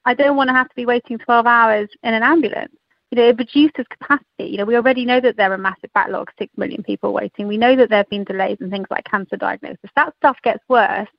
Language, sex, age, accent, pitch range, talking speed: English, female, 30-49, British, 200-250 Hz, 255 wpm